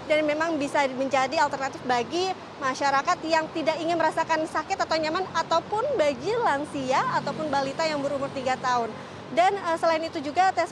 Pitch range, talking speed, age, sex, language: 270-330 Hz, 160 wpm, 20-39, female, Indonesian